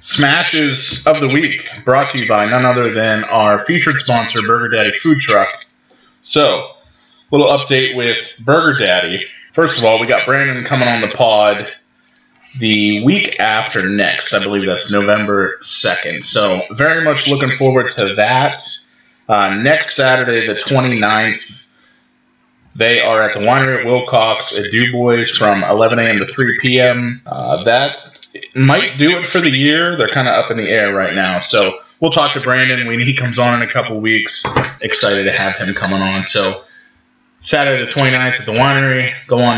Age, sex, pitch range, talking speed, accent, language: 30-49, male, 115-145 Hz, 175 wpm, American, English